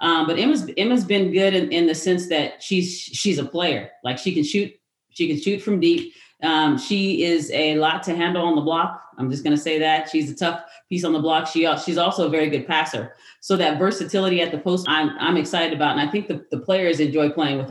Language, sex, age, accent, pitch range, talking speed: English, female, 30-49, American, 150-170 Hz, 245 wpm